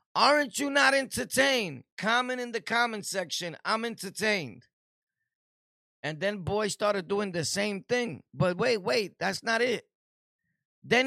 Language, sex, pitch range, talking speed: English, male, 135-200 Hz, 140 wpm